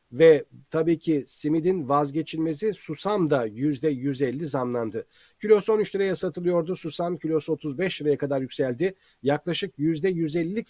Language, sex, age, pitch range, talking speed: Turkish, male, 40-59, 145-185 Hz, 120 wpm